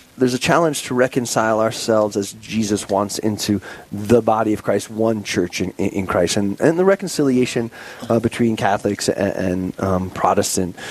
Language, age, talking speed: English, 30-49, 165 wpm